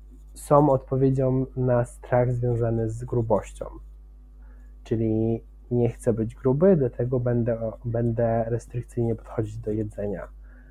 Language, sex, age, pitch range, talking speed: Polish, male, 20-39, 110-125 Hz, 105 wpm